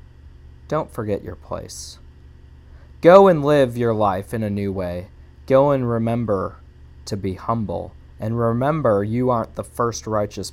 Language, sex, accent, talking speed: English, male, American, 150 wpm